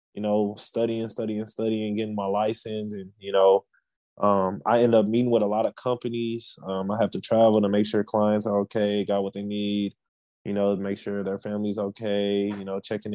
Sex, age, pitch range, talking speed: male, 20-39, 100-115 Hz, 210 wpm